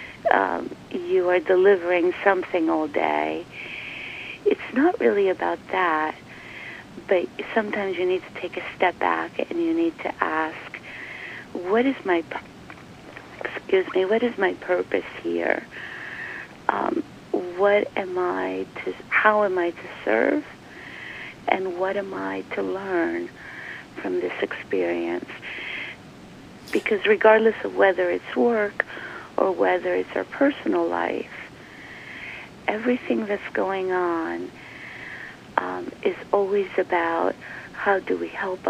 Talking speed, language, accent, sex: 120 wpm, English, American, female